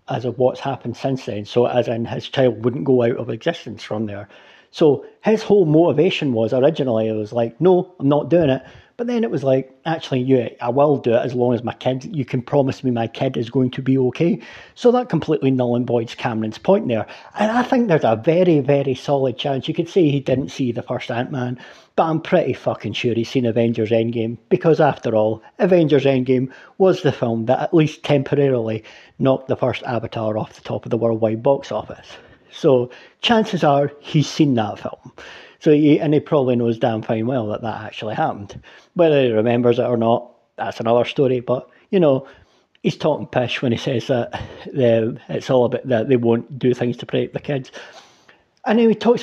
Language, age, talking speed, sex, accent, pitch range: English, 40-59, 215 wpm, male, British, 115-150 Hz